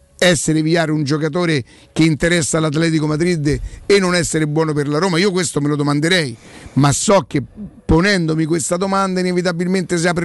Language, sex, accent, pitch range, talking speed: Italian, male, native, 155-185 Hz, 170 wpm